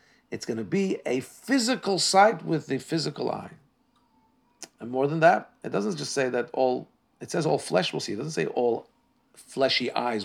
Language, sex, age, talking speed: English, male, 50-69, 195 wpm